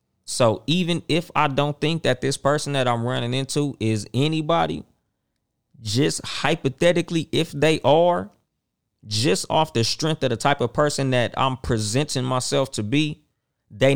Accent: American